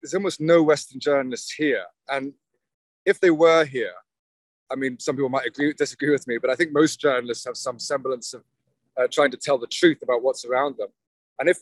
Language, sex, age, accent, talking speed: English, male, 30-49, British, 210 wpm